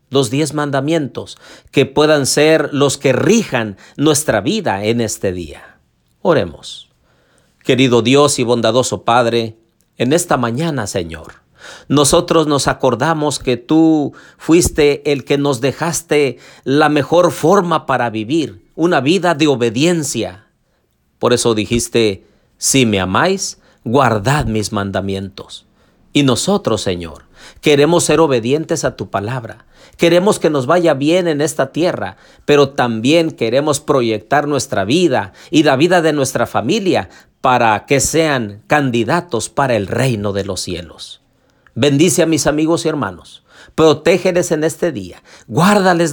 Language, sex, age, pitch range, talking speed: Spanish, male, 50-69, 110-160 Hz, 135 wpm